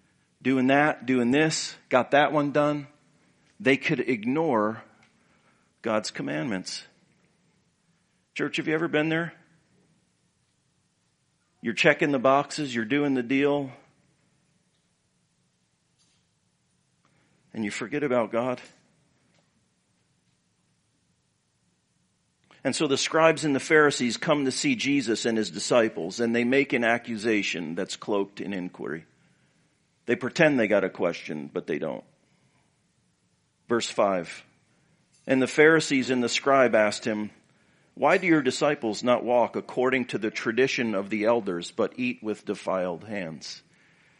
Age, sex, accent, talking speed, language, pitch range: 50-69, male, American, 125 wpm, English, 115-150 Hz